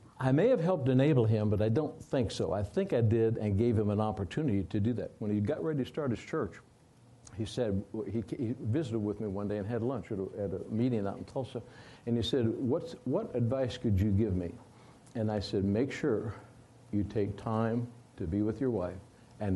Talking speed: 225 wpm